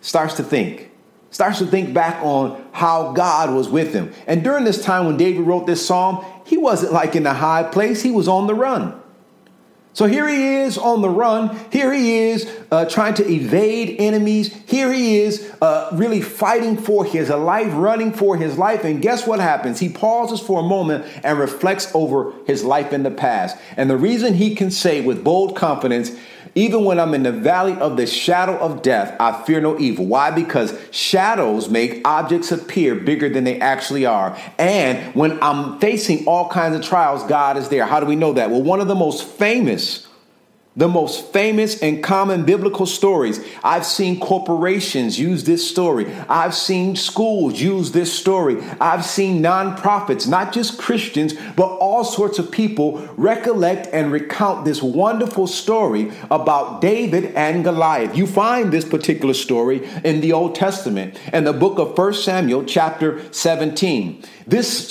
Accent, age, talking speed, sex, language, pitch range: American, 50-69, 180 wpm, male, English, 155-210 Hz